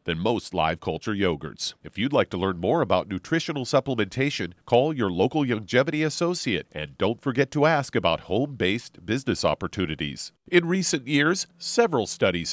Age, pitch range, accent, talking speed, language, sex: 40-59, 100-155 Hz, American, 160 wpm, English, male